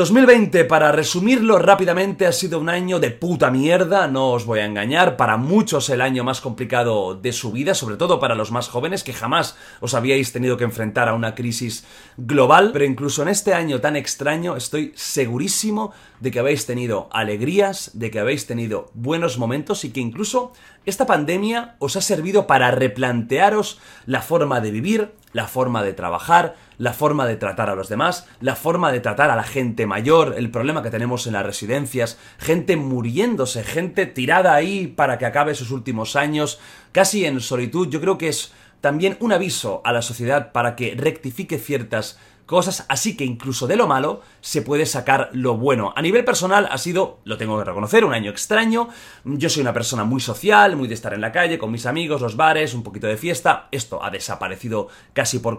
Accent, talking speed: Spanish, 195 wpm